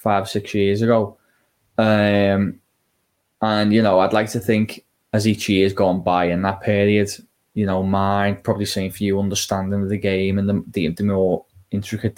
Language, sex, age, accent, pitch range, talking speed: English, male, 10-29, British, 100-110 Hz, 180 wpm